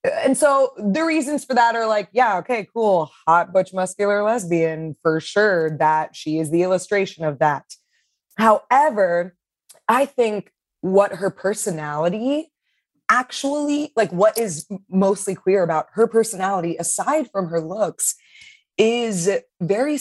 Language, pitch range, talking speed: English, 165-230 Hz, 135 wpm